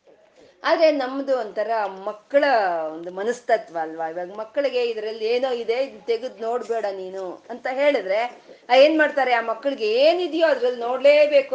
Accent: native